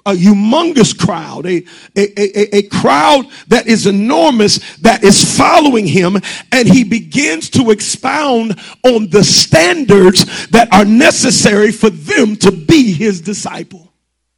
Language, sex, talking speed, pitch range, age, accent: English, male, 135 wpm, 195-260 Hz, 40-59, American